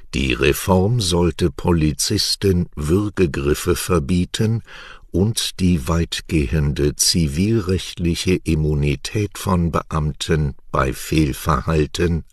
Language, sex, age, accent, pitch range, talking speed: English, male, 60-79, German, 75-95 Hz, 75 wpm